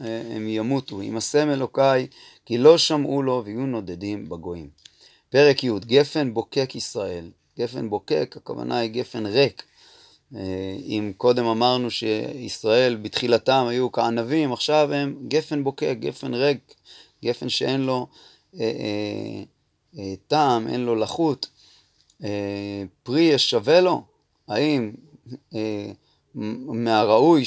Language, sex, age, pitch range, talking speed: Hebrew, male, 30-49, 115-150 Hz, 120 wpm